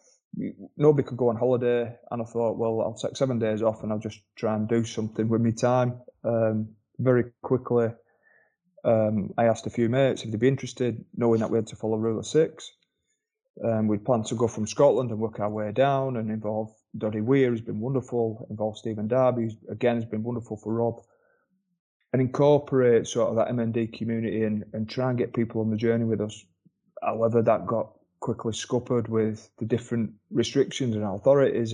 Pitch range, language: 110-125 Hz, English